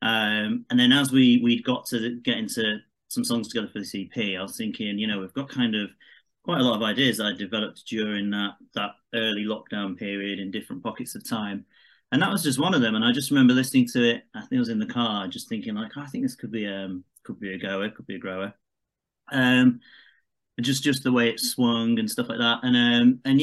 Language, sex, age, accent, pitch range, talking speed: English, male, 30-49, British, 110-155 Hz, 245 wpm